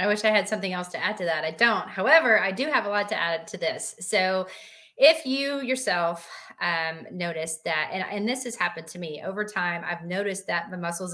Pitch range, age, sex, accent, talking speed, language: 180-220 Hz, 30-49, female, American, 230 wpm, English